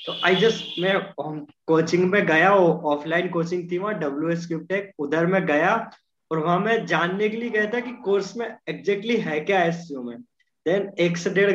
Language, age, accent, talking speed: Hindi, 20-39, native, 120 wpm